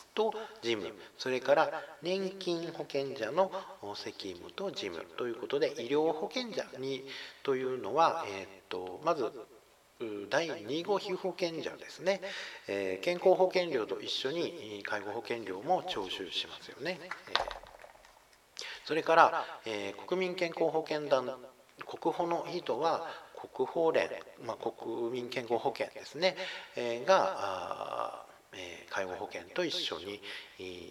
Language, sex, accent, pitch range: Japanese, male, native, 135-195 Hz